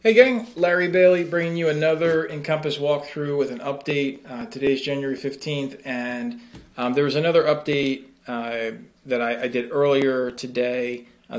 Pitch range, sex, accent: 125-150 Hz, male, American